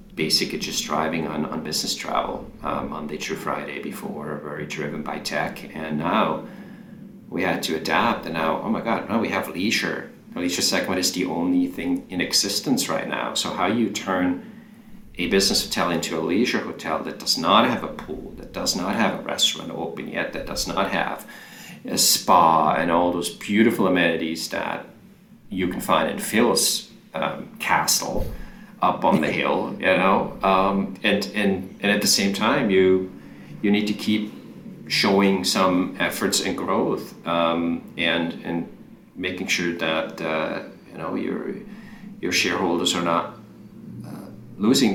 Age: 40-59